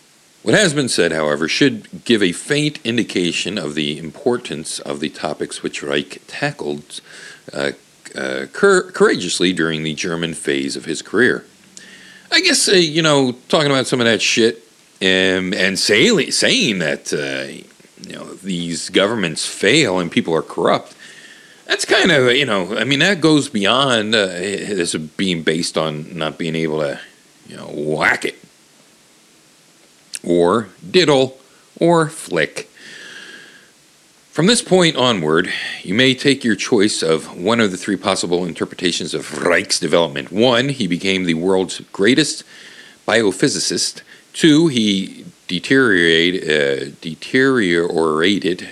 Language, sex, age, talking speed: English, male, 50-69, 135 wpm